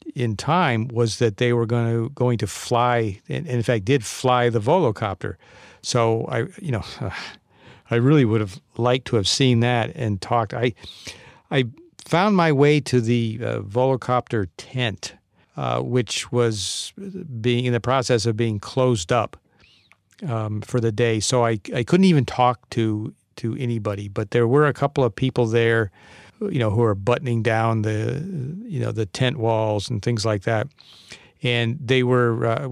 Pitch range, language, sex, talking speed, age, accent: 110-130 Hz, English, male, 175 wpm, 50-69, American